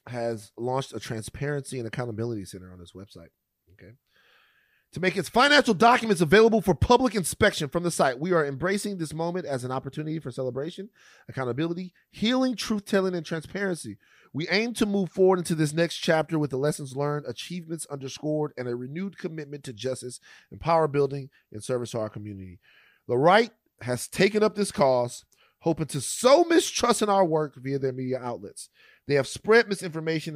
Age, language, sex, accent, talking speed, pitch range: 30-49, English, male, American, 175 wpm, 115-170 Hz